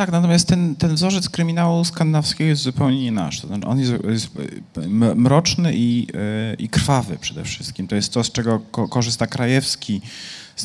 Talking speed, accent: 160 wpm, native